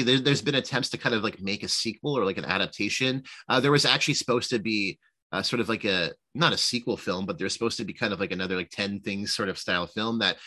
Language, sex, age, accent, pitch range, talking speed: English, male, 30-49, American, 95-125 Hz, 270 wpm